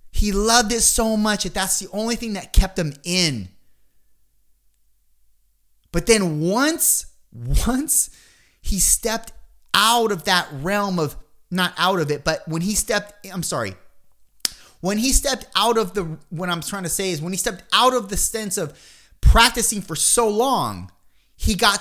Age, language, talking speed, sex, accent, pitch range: 30-49, English, 170 wpm, male, American, 160-235 Hz